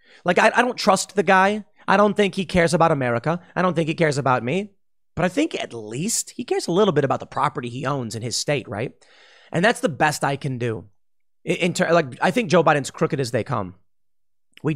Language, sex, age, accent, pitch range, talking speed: English, male, 30-49, American, 130-170 Hz, 240 wpm